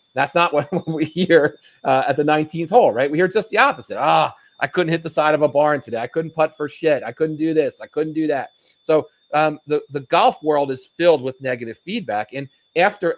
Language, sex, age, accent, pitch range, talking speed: English, male, 40-59, American, 130-170 Hz, 235 wpm